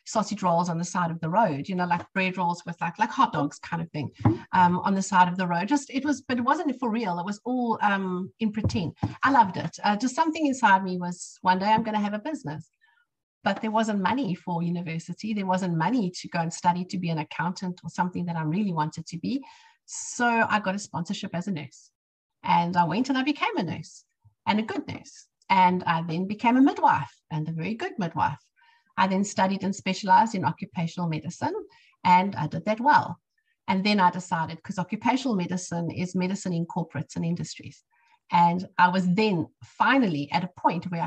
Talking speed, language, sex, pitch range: 220 wpm, English, female, 170-220 Hz